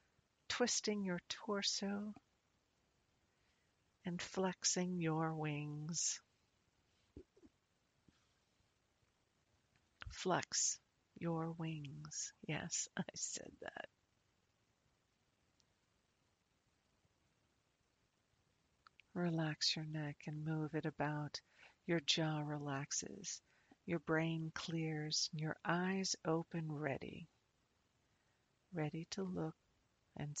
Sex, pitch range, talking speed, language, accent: female, 135-170 Hz, 70 wpm, English, American